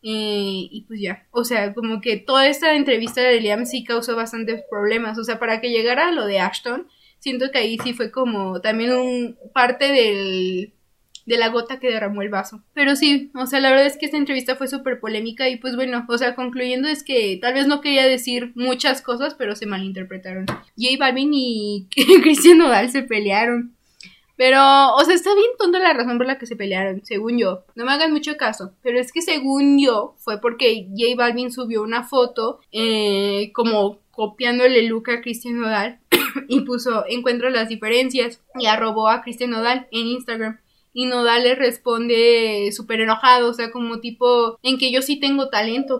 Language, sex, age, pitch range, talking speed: Spanish, female, 20-39, 225-265 Hz, 195 wpm